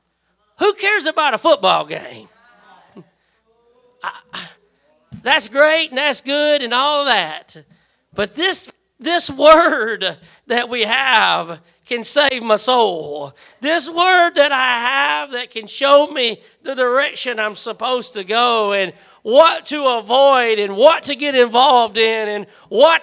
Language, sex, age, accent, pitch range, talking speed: English, male, 40-59, American, 195-270 Hz, 140 wpm